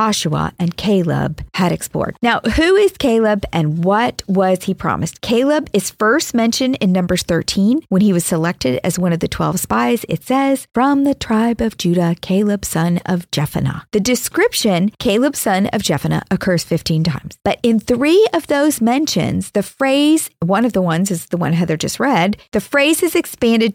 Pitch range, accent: 170-235 Hz, American